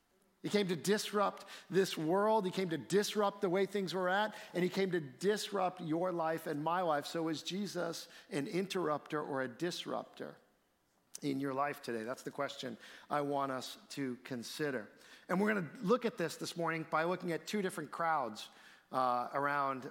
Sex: male